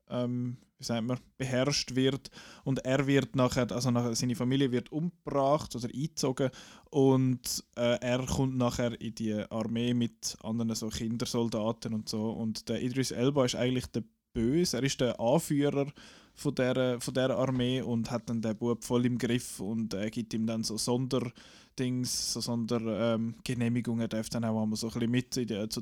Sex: male